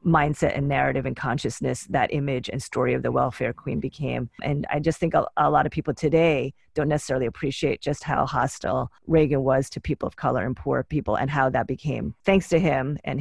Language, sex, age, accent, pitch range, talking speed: English, female, 30-49, American, 135-165 Hz, 215 wpm